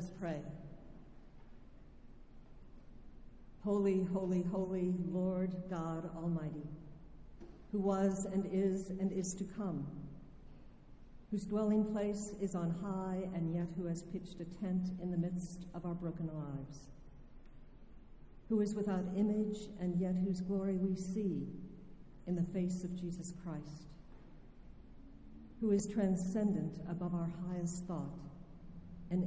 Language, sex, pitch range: English, female, 160-185 Hz